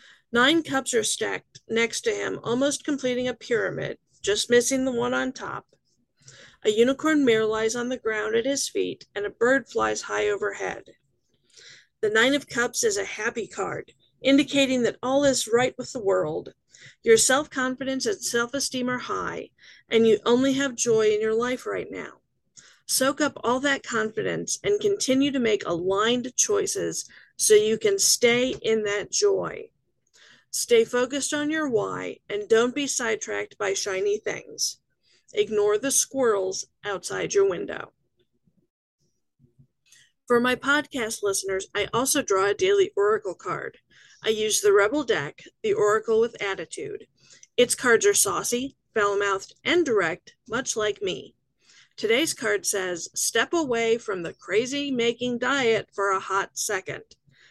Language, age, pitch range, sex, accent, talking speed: English, 50-69, 220-305 Hz, female, American, 150 wpm